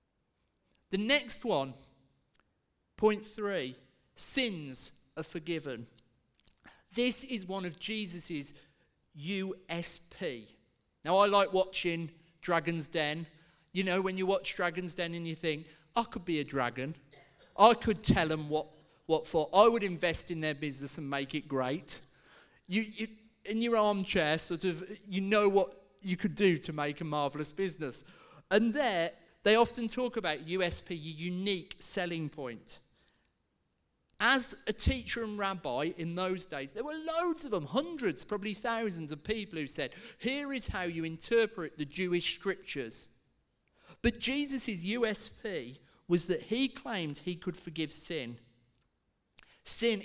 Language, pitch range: English, 155-210 Hz